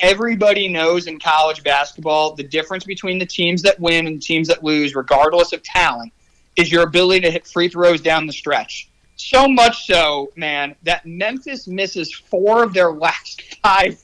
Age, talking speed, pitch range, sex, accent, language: 30-49, 175 wpm, 170-235 Hz, male, American, English